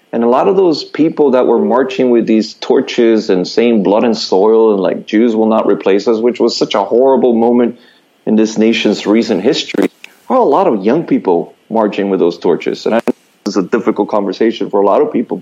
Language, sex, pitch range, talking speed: English, male, 105-140 Hz, 215 wpm